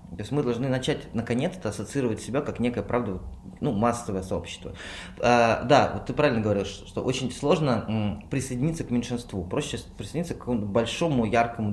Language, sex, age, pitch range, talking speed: Russian, male, 20-39, 100-130 Hz, 160 wpm